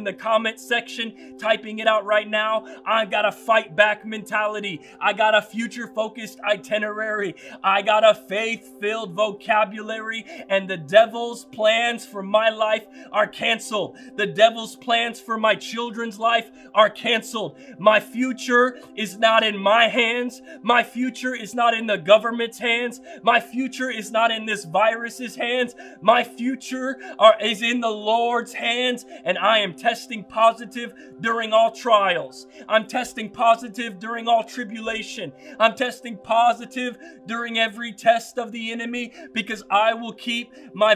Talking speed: 150 wpm